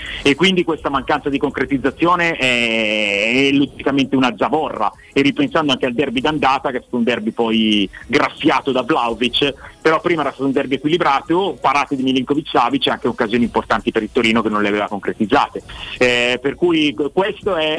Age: 30-49